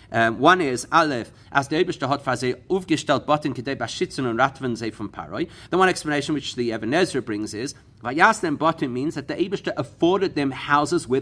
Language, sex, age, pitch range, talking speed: English, male, 40-59, 115-155 Hz, 180 wpm